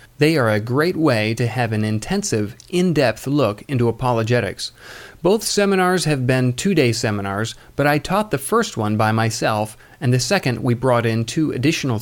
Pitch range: 115-150 Hz